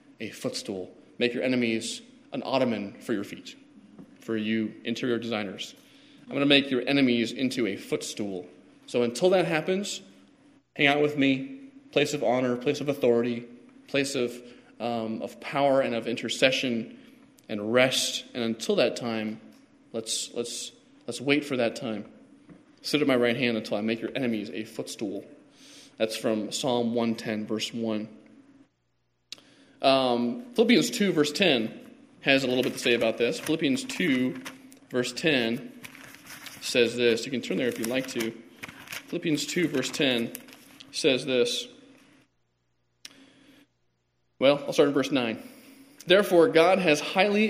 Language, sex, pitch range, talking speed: English, male, 115-190 Hz, 150 wpm